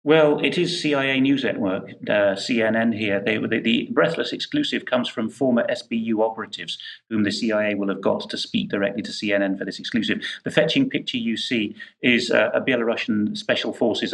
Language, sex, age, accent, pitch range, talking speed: English, male, 30-49, British, 100-115 Hz, 180 wpm